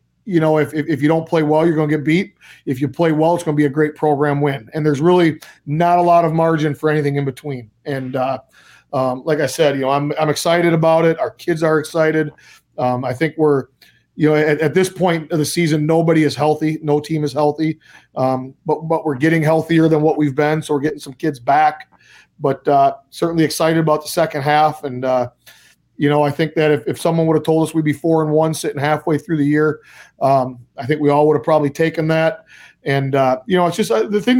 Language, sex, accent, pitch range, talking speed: English, male, American, 145-165 Hz, 245 wpm